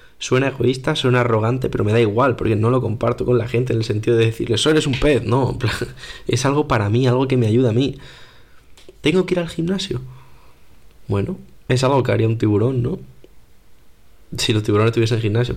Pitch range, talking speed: 110-130 Hz, 220 wpm